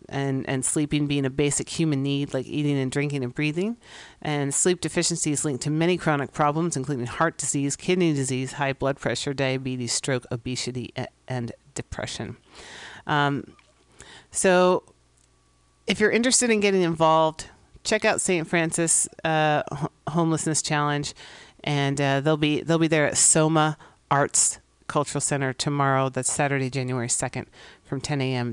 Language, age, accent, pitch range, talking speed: English, 40-59, American, 140-175 Hz, 145 wpm